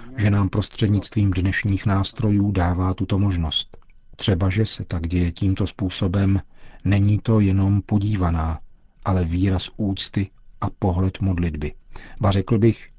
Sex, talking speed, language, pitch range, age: male, 130 wpm, Czech, 90-105 Hz, 50-69